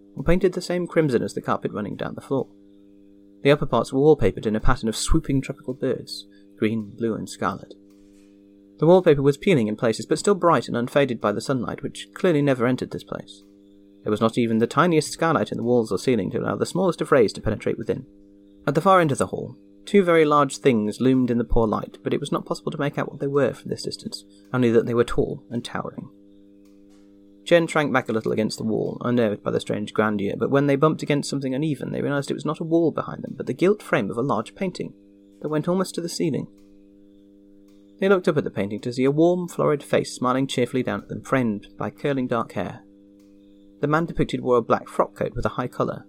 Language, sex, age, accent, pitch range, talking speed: English, male, 30-49, British, 100-145 Hz, 235 wpm